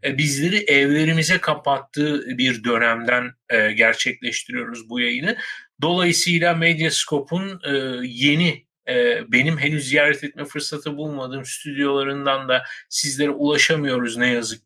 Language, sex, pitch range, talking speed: Turkish, male, 135-175 Hz, 95 wpm